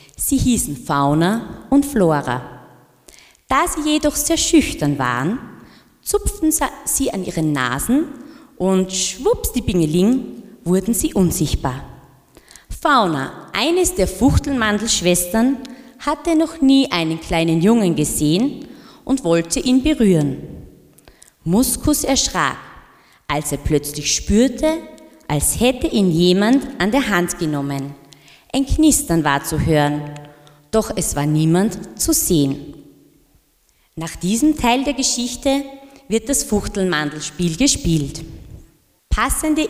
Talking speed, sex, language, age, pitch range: 110 wpm, female, German, 20-39, 160-270 Hz